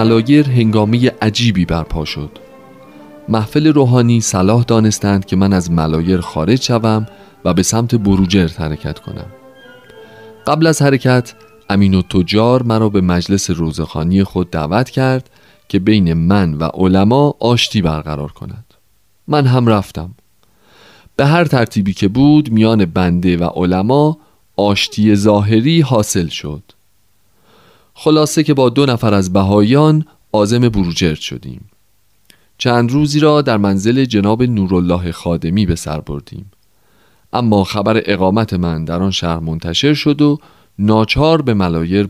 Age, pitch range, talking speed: 30-49, 95-120 Hz, 130 wpm